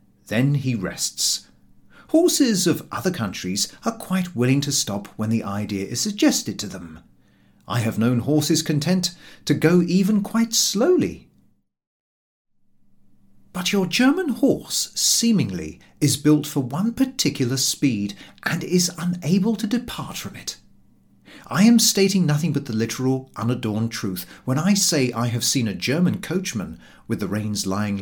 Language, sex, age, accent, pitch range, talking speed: English, male, 40-59, British, 110-180 Hz, 150 wpm